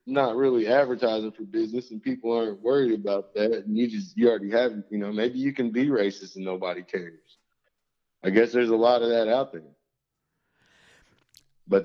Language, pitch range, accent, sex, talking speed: English, 100-120 Hz, American, male, 190 wpm